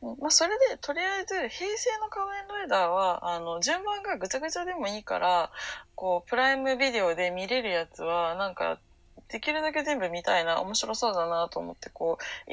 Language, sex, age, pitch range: Japanese, female, 20-39, 160-240 Hz